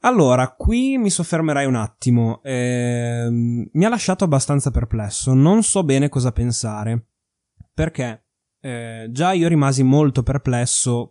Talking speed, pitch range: 130 wpm, 115-145 Hz